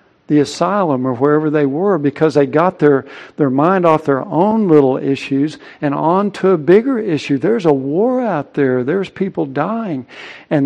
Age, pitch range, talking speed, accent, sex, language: 60-79, 135-165 Hz, 180 wpm, American, male, English